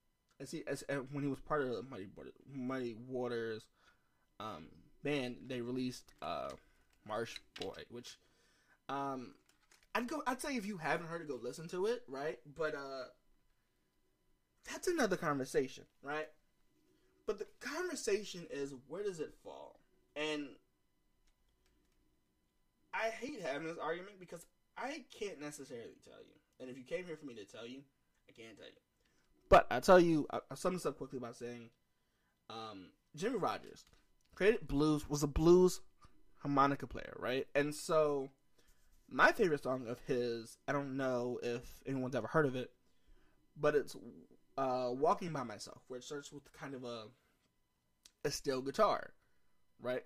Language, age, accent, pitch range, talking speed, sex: English, 20-39, American, 120-155 Hz, 155 wpm, male